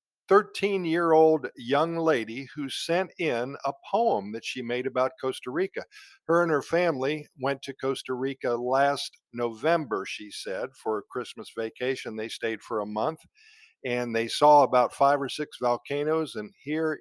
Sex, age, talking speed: male, 50-69, 160 wpm